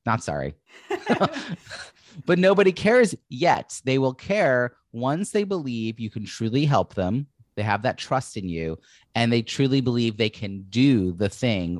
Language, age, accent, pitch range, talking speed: English, 30-49, American, 100-135 Hz, 165 wpm